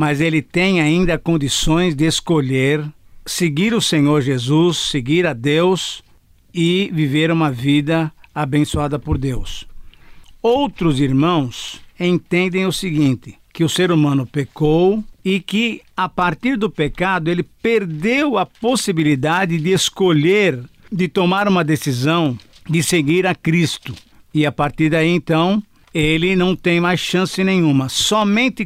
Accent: Brazilian